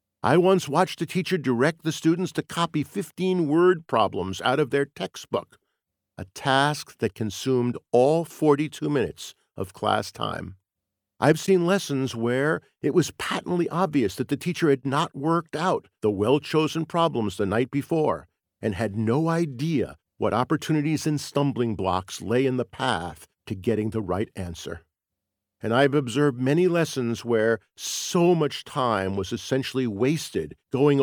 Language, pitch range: English, 110-165 Hz